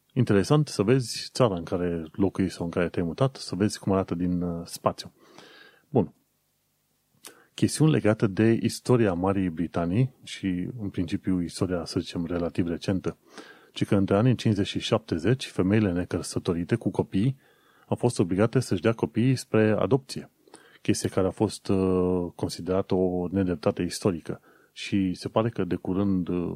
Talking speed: 150 wpm